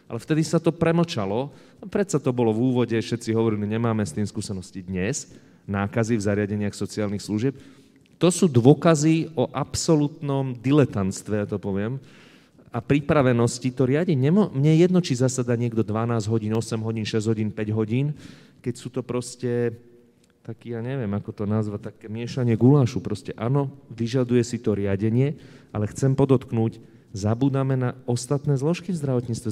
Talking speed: 155 wpm